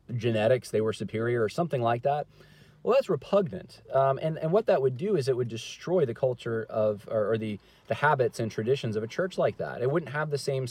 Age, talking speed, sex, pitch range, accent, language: 30-49, 235 wpm, male, 110-150 Hz, American, English